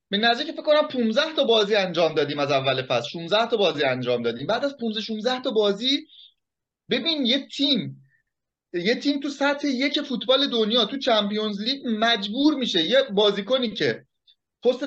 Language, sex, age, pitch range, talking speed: Persian, male, 30-49, 210-280 Hz, 165 wpm